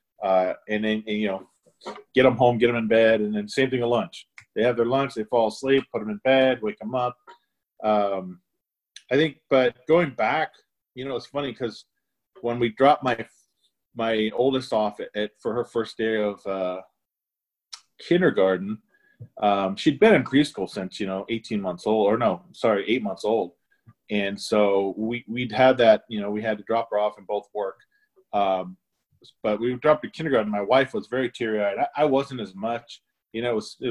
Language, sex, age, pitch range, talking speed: English, male, 40-59, 105-135 Hz, 205 wpm